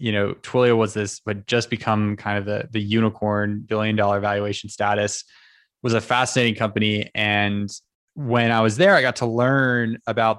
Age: 20-39